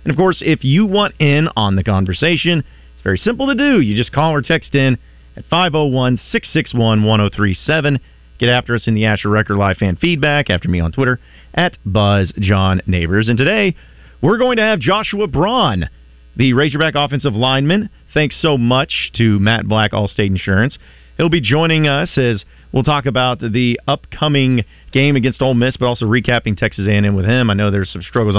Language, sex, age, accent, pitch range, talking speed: English, male, 40-59, American, 100-140 Hz, 185 wpm